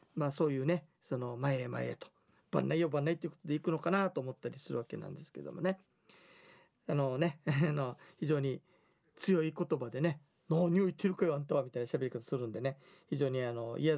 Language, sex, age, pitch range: Japanese, male, 40-59, 140-200 Hz